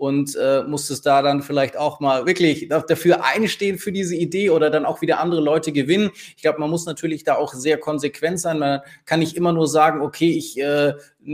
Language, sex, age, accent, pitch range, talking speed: German, male, 20-39, German, 150-175 Hz, 215 wpm